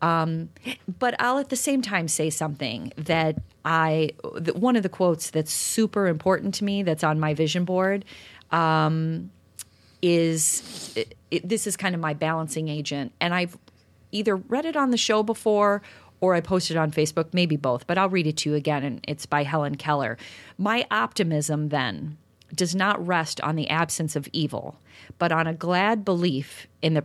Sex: female